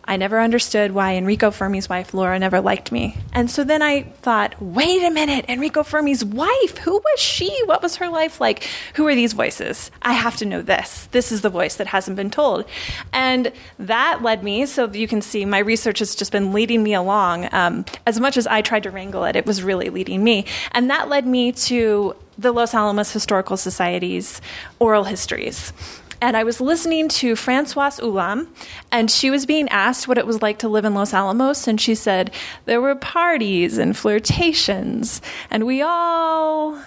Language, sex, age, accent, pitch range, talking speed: English, female, 20-39, American, 205-270 Hz, 195 wpm